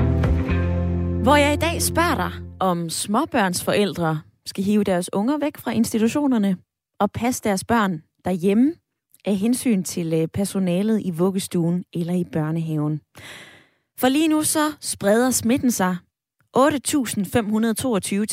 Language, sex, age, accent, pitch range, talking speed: Danish, female, 20-39, native, 170-235 Hz, 125 wpm